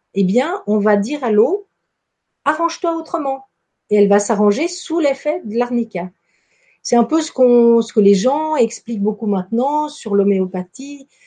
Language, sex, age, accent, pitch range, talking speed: French, female, 50-69, French, 200-285 Hz, 175 wpm